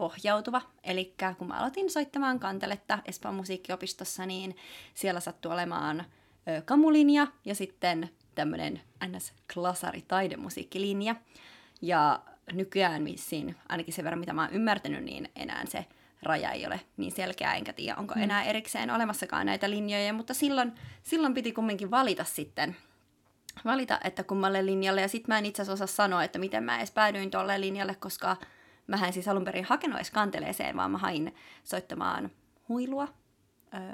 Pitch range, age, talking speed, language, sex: 185-230 Hz, 20-39, 145 wpm, Finnish, female